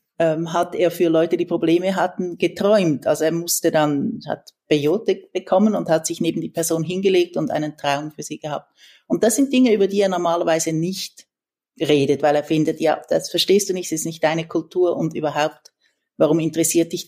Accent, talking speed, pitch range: Austrian, 195 wpm, 165-200 Hz